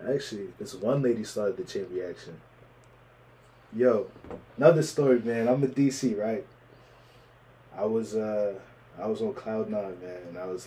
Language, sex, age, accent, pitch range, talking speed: English, male, 20-39, American, 120-135 Hz, 150 wpm